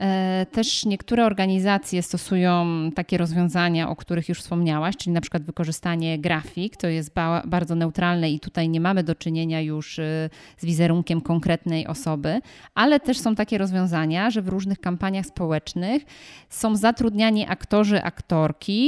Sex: female